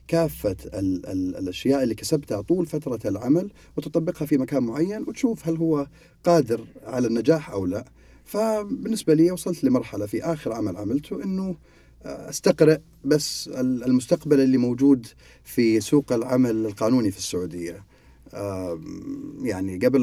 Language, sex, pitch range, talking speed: Arabic, male, 95-135 Hz, 125 wpm